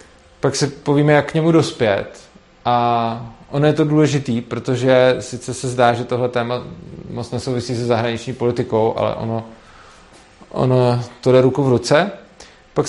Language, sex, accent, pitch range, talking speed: Czech, male, native, 115-140 Hz, 155 wpm